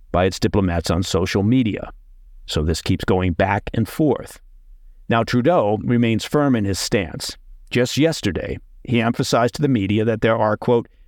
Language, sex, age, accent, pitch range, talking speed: English, male, 50-69, American, 95-120 Hz, 170 wpm